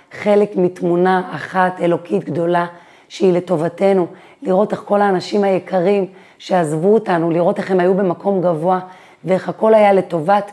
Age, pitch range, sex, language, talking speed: 30-49, 170-195 Hz, female, Hebrew, 135 wpm